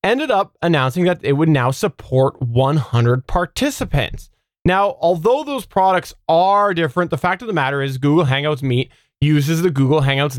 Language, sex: English, male